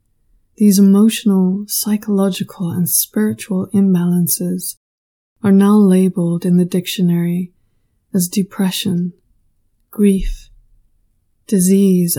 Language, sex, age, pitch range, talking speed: English, female, 20-39, 175-205 Hz, 80 wpm